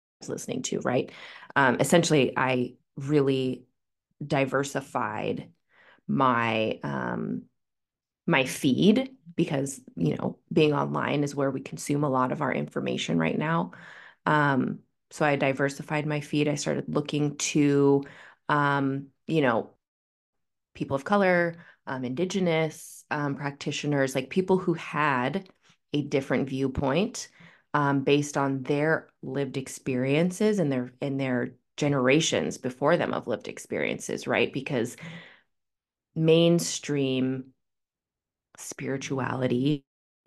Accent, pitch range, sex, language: American, 135-155 Hz, female, English